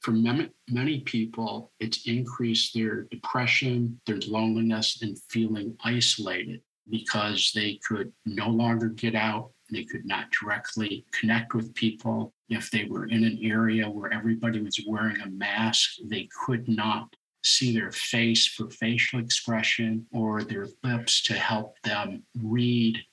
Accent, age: American, 50-69